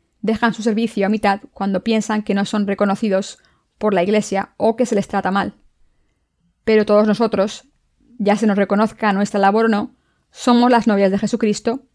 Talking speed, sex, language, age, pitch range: 180 wpm, female, Spanish, 20-39, 200-220 Hz